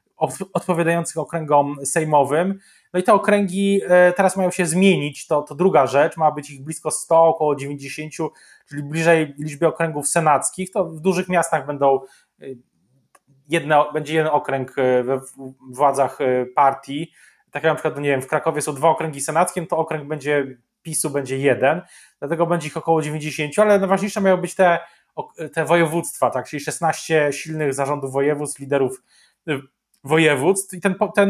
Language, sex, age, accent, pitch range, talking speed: Polish, male, 20-39, native, 145-175 Hz, 155 wpm